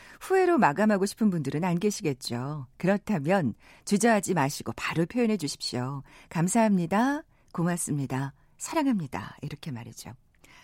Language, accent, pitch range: Korean, native, 155-250 Hz